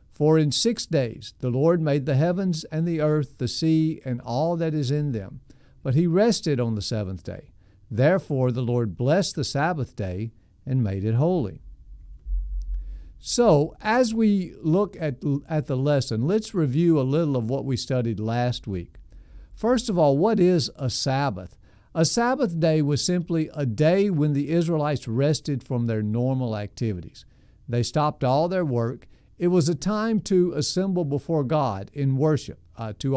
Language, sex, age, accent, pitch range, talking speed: English, male, 50-69, American, 120-165 Hz, 170 wpm